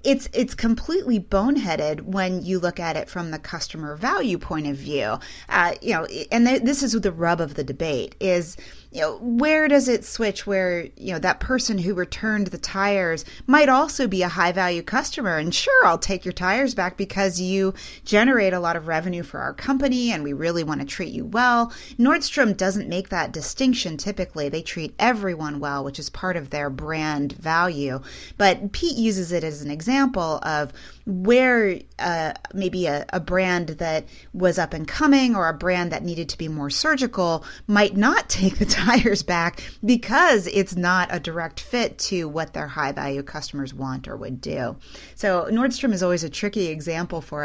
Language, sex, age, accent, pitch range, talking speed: English, female, 30-49, American, 155-210 Hz, 190 wpm